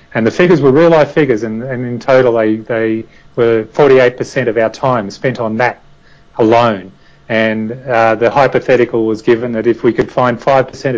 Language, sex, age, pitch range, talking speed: English, male, 30-49, 110-130 Hz, 180 wpm